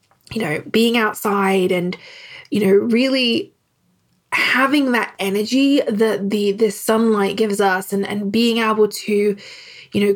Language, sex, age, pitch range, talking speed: English, female, 20-39, 195-245 Hz, 140 wpm